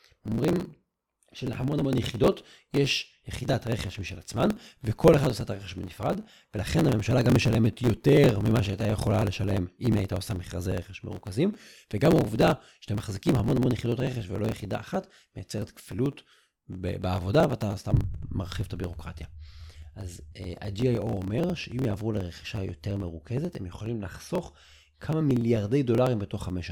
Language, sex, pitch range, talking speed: Hebrew, male, 90-125 Hz, 155 wpm